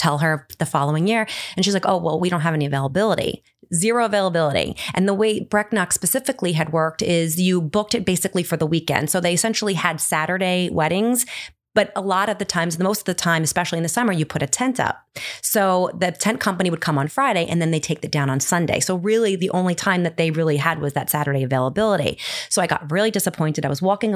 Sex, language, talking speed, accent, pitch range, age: female, English, 235 wpm, American, 170-225 Hz, 30-49